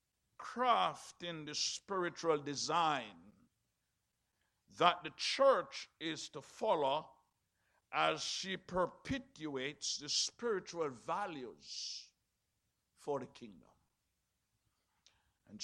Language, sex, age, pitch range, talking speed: English, male, 60-79, 135-190 Hz, 80 wpm